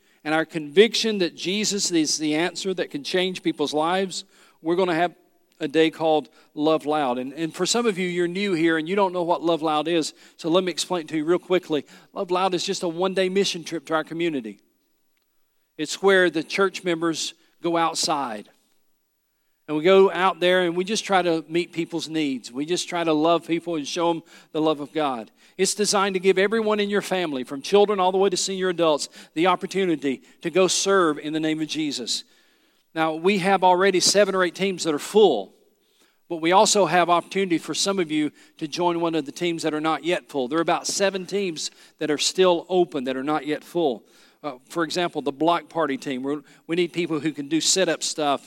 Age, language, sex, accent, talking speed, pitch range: 50-69, English, male, American, 220 wpm, 155-185 Hz